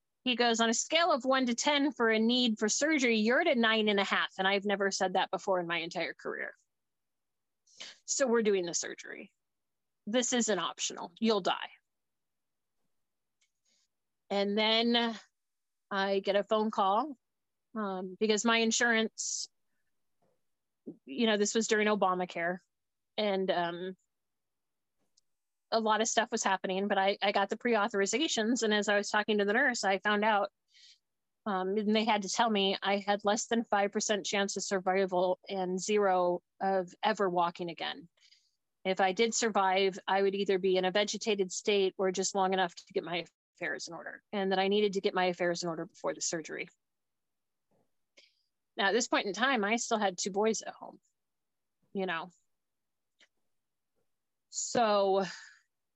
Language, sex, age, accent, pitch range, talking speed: English, female, 30-49, American, 190-225 Hz, 165 wpm